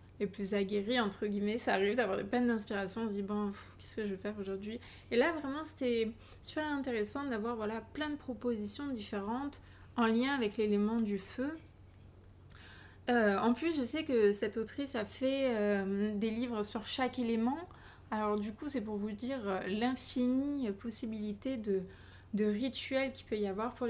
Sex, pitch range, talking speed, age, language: female, 200-250 Hz, 185 wpm, 20-39, French